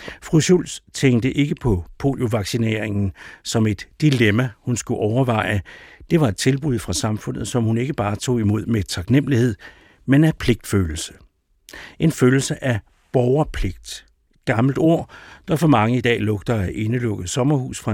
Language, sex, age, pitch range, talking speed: Danish, male, 60-79, 105-135 Hz, 150 wpm